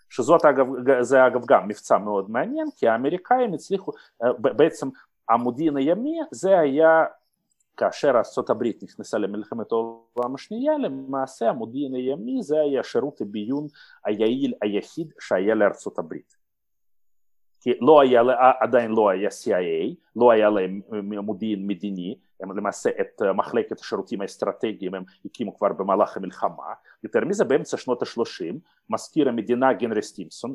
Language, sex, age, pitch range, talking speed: Hebrew, male, 40-59, 110-160 Hz, 125 wpm